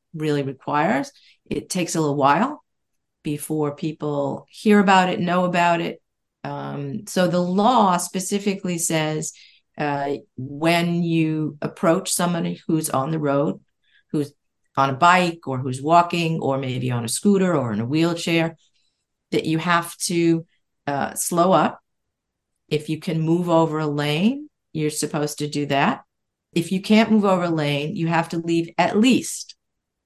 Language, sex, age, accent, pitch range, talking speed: English, female, 50-69, American, 145-185 Hz, 155 wpm